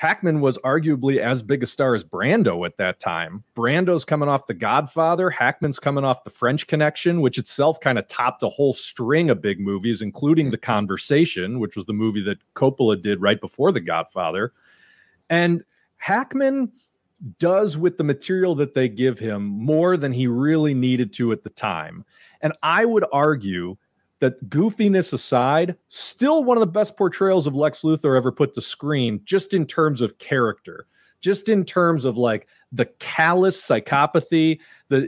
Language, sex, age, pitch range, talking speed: English, male, 40-59, 125-170 Hz, 175 wpm